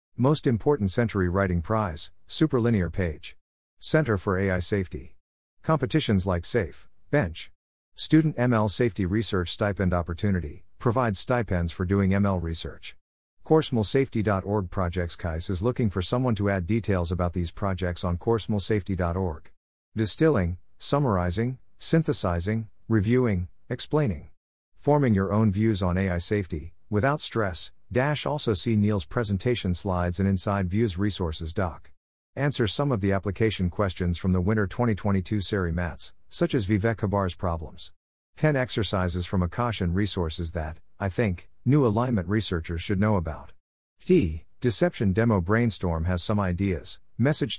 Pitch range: 90-115 Hz